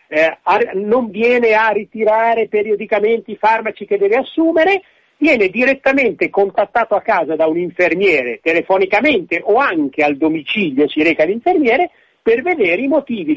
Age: 50-69